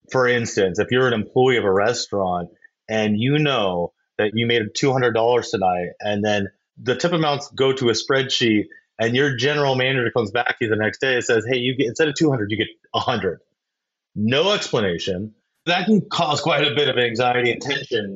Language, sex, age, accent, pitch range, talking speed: English, male, 30-49, American, 110-155 Hz, 200 wpm